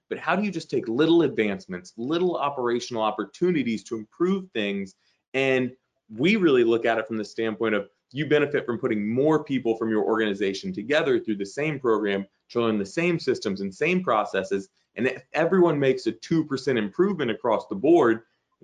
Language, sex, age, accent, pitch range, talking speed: English, male, 30-49, American, 110-155 Hz, 180 wpm